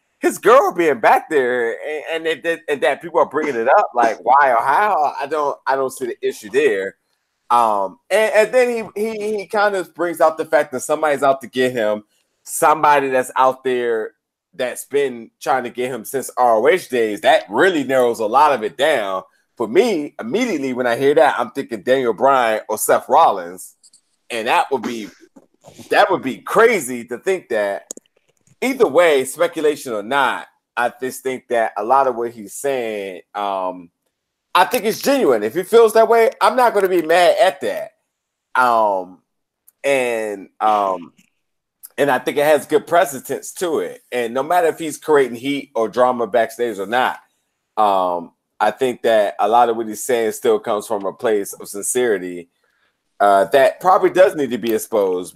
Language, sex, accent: English, male, American